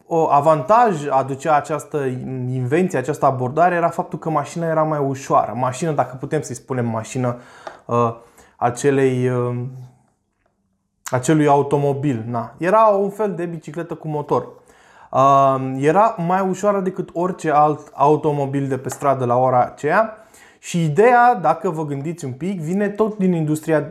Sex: male